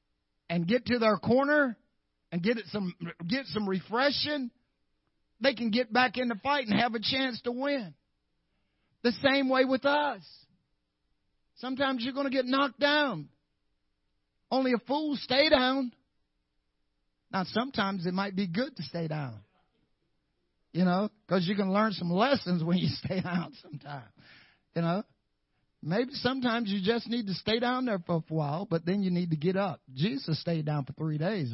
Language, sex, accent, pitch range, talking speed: English, male, American, 155-250 Hz, 175 wpm